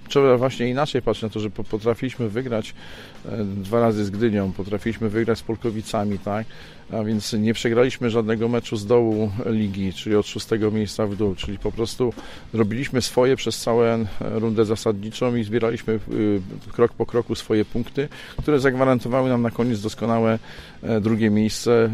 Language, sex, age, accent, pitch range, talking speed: Polish, male, 40-59, native, 105-115 Hz, 155 wpm